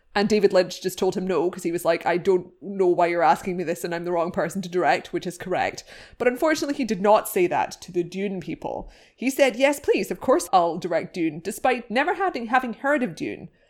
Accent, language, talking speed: British, English, 245 wpm